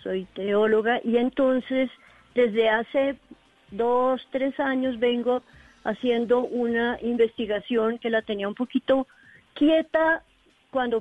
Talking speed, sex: 110 wpm, female